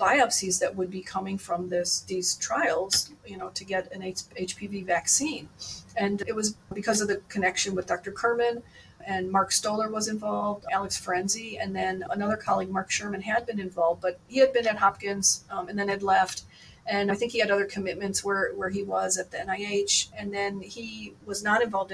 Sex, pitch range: female, 185-220 Hz